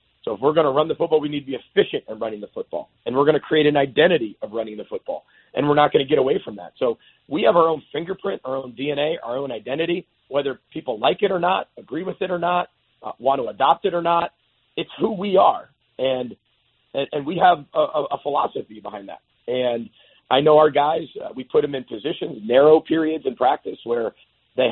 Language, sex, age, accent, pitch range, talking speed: English, male, 40-59, American, 130-170 Hz, 230 wpm